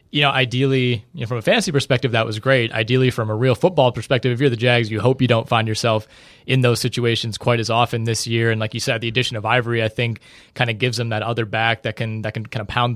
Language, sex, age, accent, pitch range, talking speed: English, male, 20-39, American, 115-130 Hz, 280 wpm